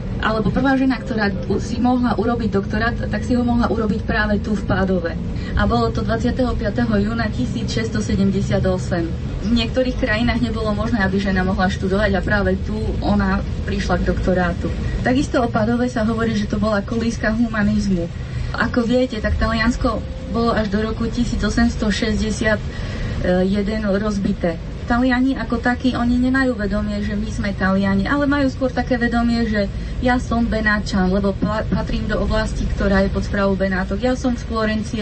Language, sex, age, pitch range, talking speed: Slovak, female, 20-39, 195-240 Hz, 160 wpm